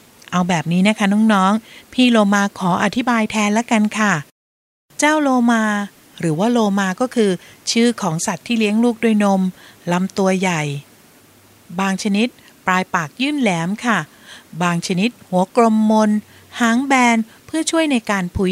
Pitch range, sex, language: 180-230 Hz, female, Thai